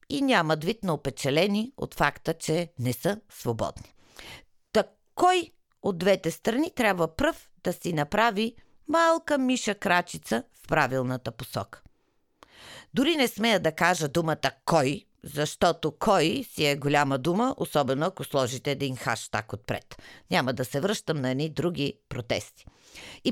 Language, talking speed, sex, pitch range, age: Bulgarian, 140 wpm, female, 140-230 Hz, 50-69